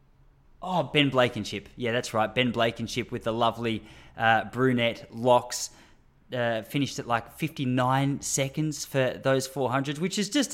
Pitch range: 130-175 Hz